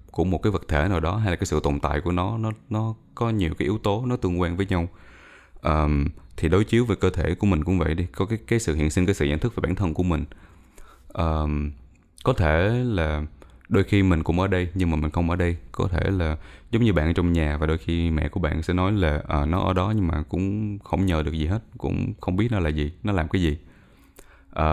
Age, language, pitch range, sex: 20-39, Vietnamese, 75-95 Hz, male